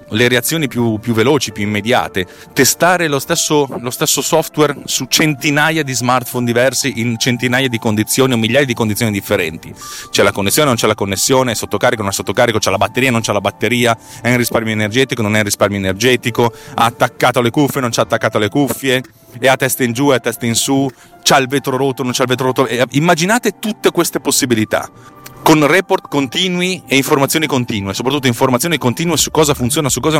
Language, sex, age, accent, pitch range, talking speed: Italian, male, 30-49, native, 110-145 Hz, 200 wpm